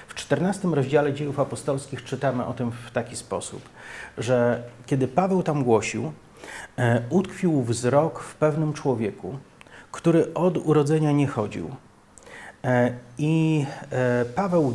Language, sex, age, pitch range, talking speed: Polish, male, 40-59, 120-155 Hz, 115 wpm